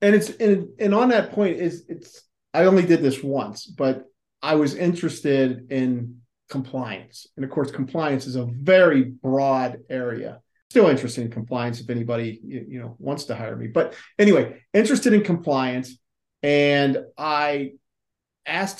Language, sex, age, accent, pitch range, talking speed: English, male, 40-59, American, 130-185 Hz, 160 wpm